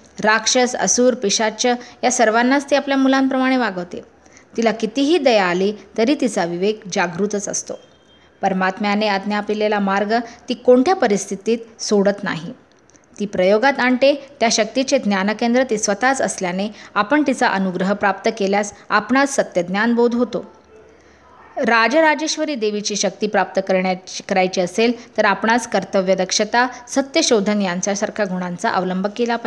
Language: English